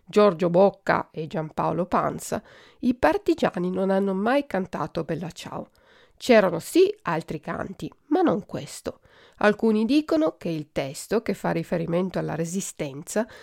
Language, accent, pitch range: Italian, native, 170-245 Hz